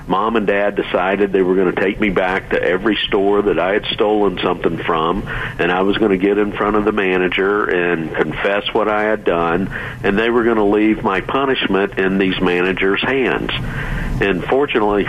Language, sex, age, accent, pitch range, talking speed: English, male, 50-69, American, 95-115 Hz, 205 wpm